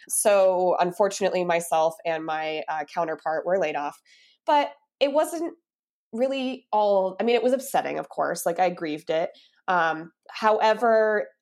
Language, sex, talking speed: English, female, 145 wpm